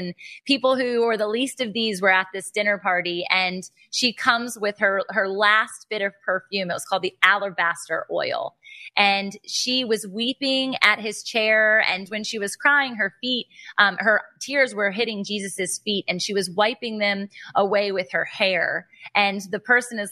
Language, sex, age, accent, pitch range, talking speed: English, female, 20-39, American, 195-235 Hz, 180 wpm